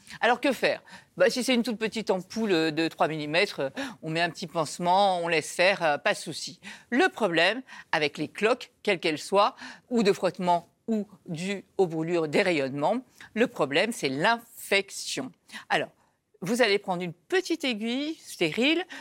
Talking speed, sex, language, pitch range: 165 wpm, female, French, 180-245 Hz